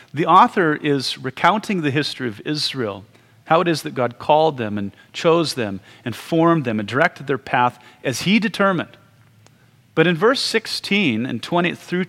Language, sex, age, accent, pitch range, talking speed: English, male, 30-49, American, 115-150 Hz, 175 wpm